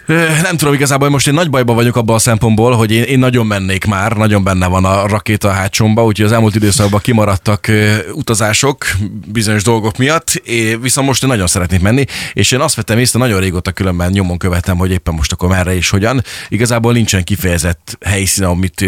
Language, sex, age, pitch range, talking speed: Hungarian, male, 30-49, 90-115 Hz, 200 wpm